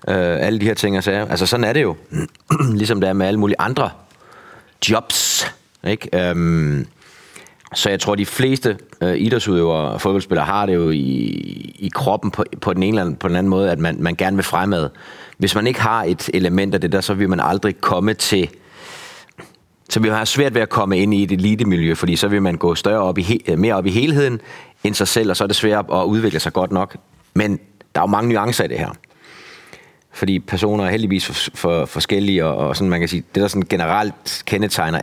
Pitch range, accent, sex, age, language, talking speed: 90-105 Hz, native, male, 30-49, Danish, 220 wpm